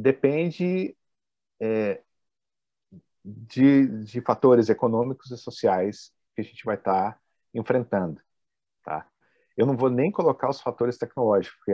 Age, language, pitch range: 50-69, Portuguese, 100-125 Hz